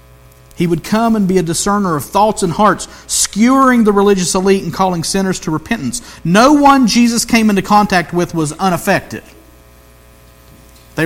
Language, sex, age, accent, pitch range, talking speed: English, male, 50-69, American, 125-195 Hz, 165 wpm